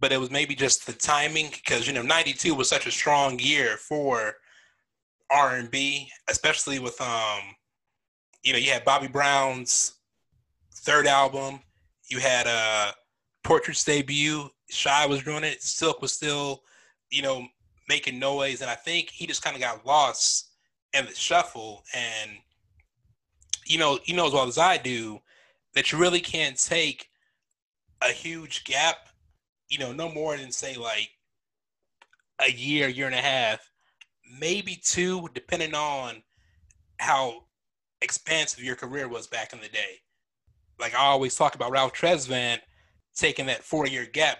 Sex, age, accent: male, 20-39, American